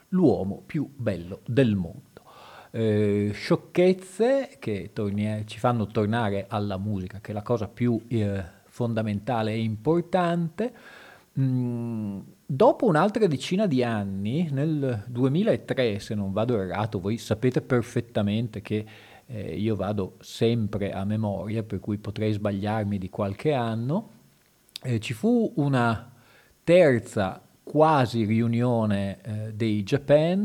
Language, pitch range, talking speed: Italian, 105-140 Hz, 120 wpm